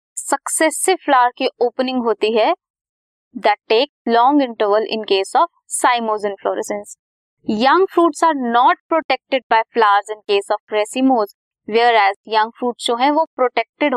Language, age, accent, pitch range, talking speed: Hindi, 20-39, native, 215-265 Hz, 130 wpm